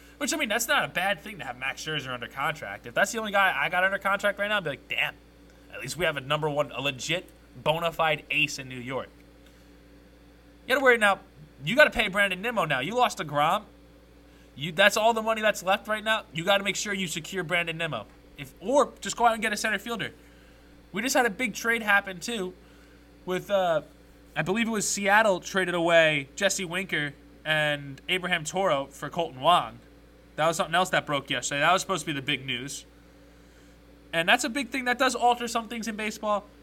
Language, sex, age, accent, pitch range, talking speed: English, male, 20-39, American, 150-215 Hz, 230 wpm